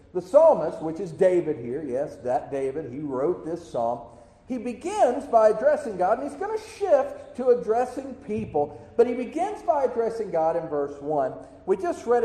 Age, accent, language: 50-69, American, English